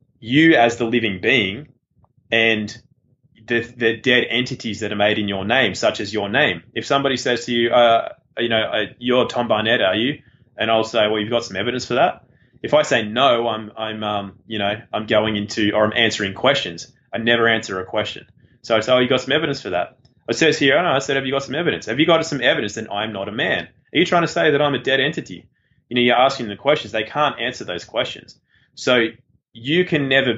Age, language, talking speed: 20-39, English, 240 wpm